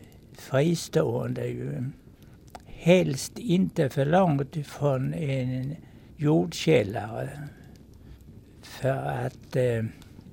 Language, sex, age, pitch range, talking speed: Swedish, male, 60-79, 120-160 Hz, 70 wpm